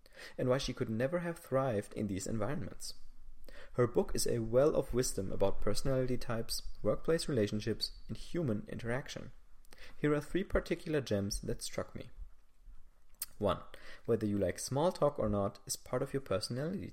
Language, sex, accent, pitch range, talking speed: English, male, German, 100-135 Hz, 165 wpm